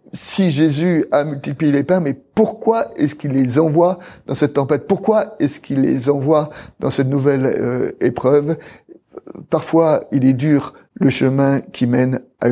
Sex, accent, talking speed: male, French, 165 wpm